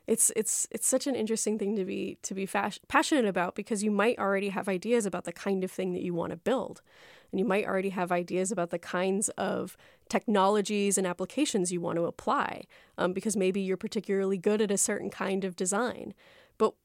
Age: 20-39